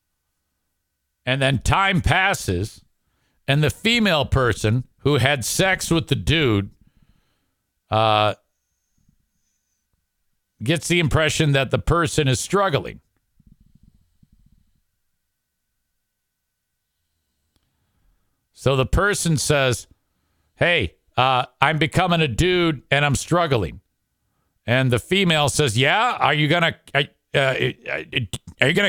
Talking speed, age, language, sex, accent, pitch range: 105 wpm, 50-69, English, male, American, 105-165 Hz